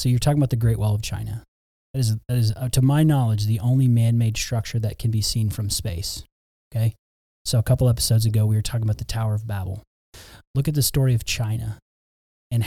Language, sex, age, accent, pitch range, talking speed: English, male, 30-49, American, 110-125 Hz, 225 wpm